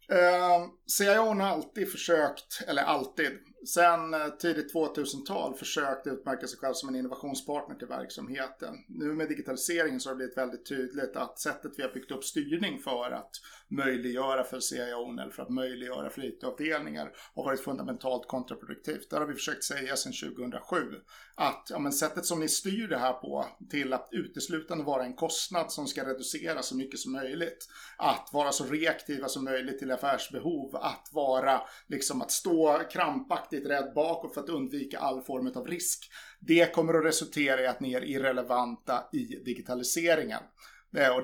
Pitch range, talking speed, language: 130-165 Hz, 170 wpm, Swedish